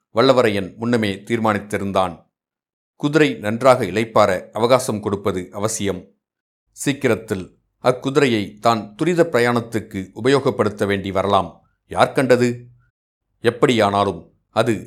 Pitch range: 100-120 Hz